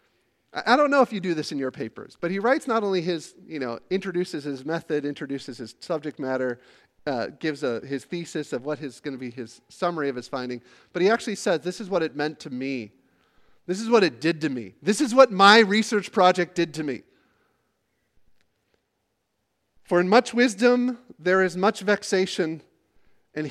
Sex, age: male, 40-59